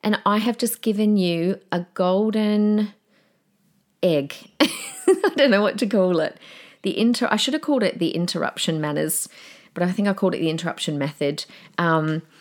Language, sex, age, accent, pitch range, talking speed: English, female, 30-49, Australian, 165-215 Hz, 175 wpm